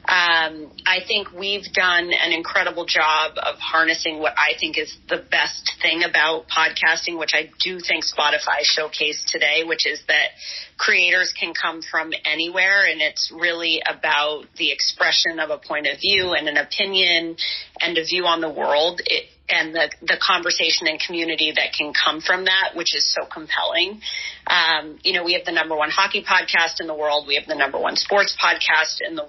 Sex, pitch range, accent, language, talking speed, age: female, 155-190 Hz, American, English, 190 wpm, 40-59